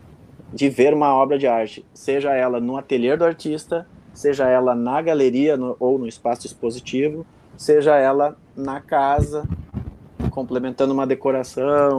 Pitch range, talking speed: 125-150 Hz, 140 wpm